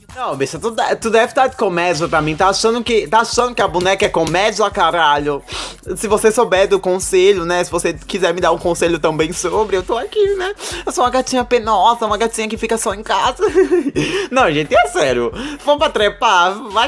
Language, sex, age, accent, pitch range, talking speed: Portuguese, male, 20-39, Brazilian, 160-235 Hz, 215 wpm